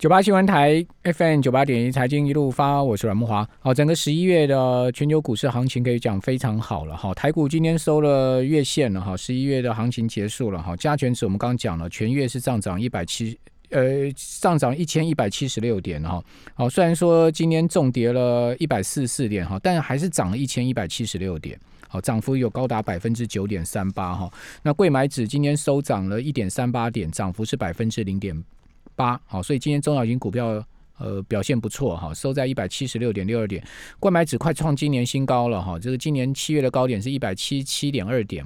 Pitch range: 105-145 Hz